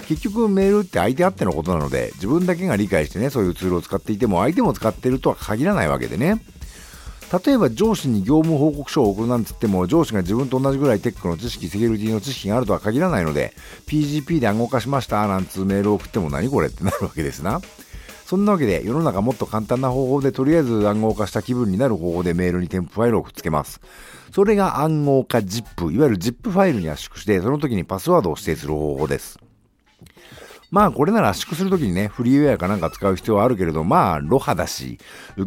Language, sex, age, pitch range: Japanese, male, 50-69, 100-160 Hz